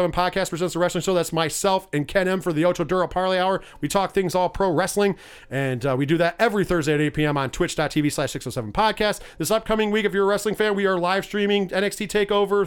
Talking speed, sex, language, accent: 235 wpm, male, English, American